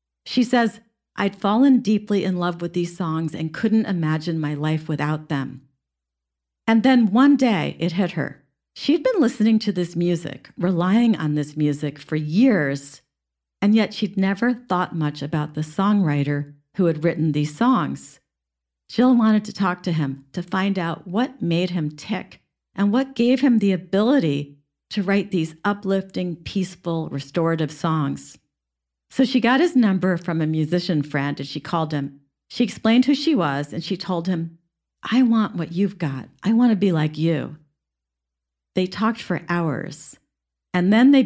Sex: female